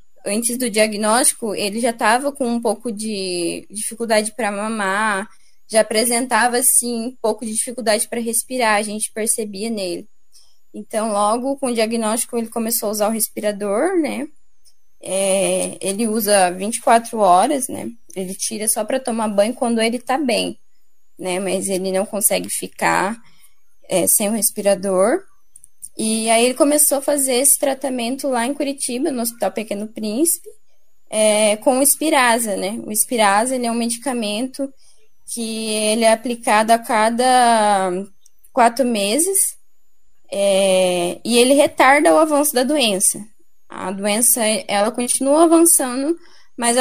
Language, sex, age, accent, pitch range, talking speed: Portuguese, female, 10-29, Brazilian, 210-255 Hz, 140 wpm